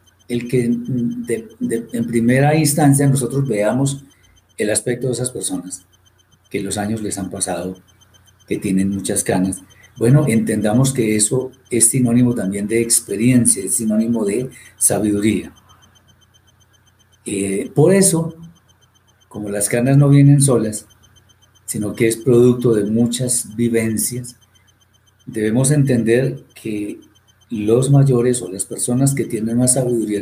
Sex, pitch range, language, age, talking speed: male, 105-125 Hz, Spanish, 40-59, 130 wpm